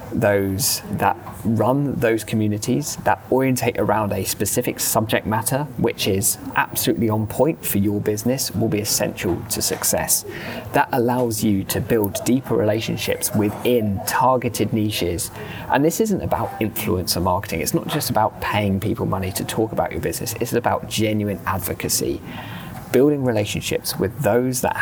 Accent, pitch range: British, 100-125 Hz